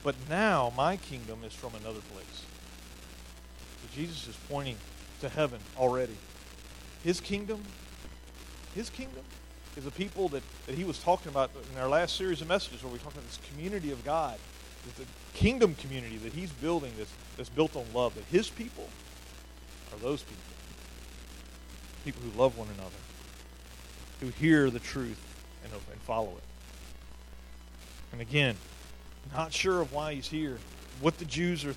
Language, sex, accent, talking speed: English, male, American, 160 wpm